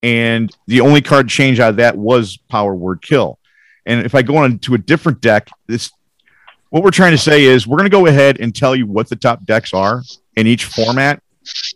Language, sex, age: English, male, 40-59